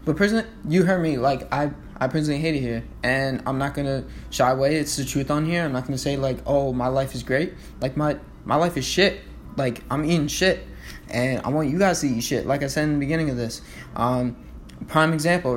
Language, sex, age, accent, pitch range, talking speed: English, male, 20-39, American, 125-150 Hz, 235 wpm